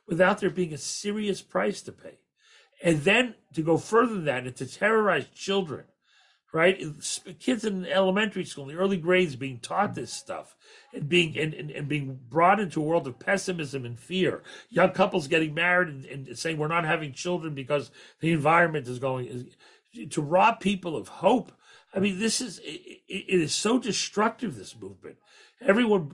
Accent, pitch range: American, 130-185 Hz